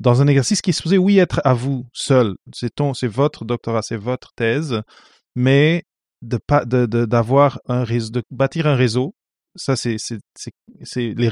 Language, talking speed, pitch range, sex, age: English, 195 wpm, 120-145 Hz, male, 30-49